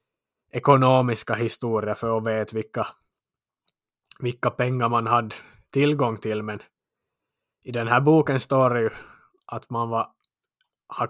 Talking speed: 125 wpm